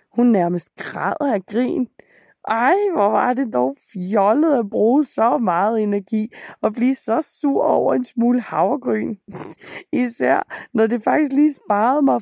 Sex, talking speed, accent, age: female, 150 wpm, native, 20-39